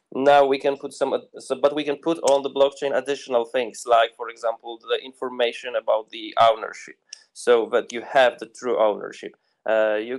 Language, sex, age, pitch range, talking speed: English, male, 20-39, 125-150 Hz, 190 wpm